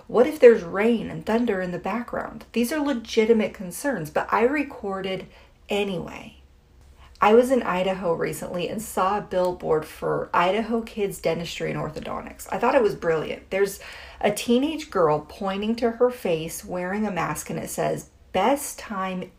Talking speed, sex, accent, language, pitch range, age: 165 wpm, female, American, English, 180-240 Hz, 40-59